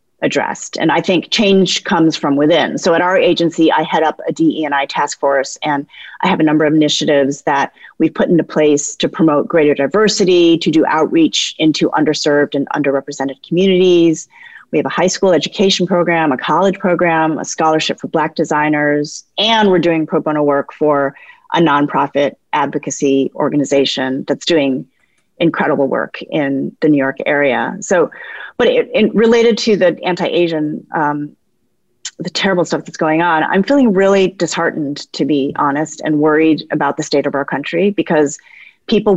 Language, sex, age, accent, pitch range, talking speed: English, female, 30-49, American, 145-175 Hz, 170 wpm